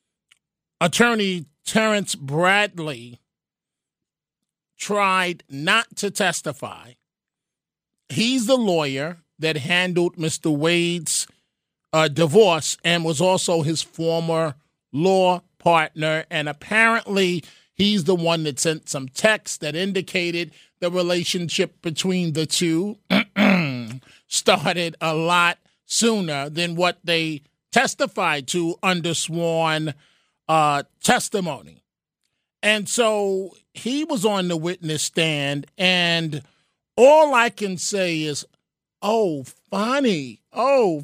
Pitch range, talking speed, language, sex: 160-205 Hz, 100 wpm, English, male